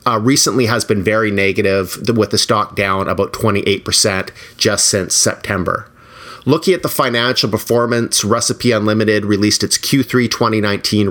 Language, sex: English, male